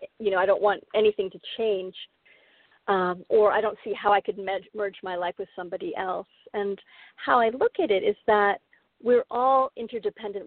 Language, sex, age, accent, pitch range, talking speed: English, female, 40-59, American, 195-240 Hz, 195 wpm